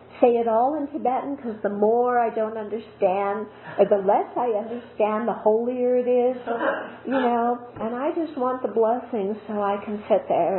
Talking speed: 185 wpm